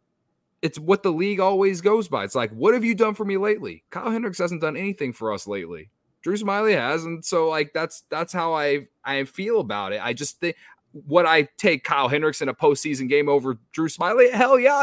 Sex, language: male, English